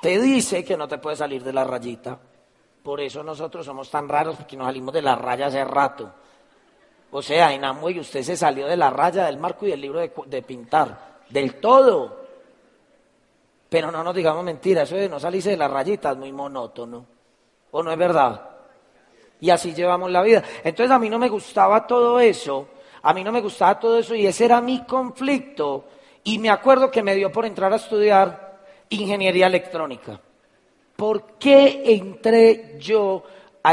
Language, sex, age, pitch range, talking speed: Spanish, male, 40-59, 160-250 Hz, 185 wpm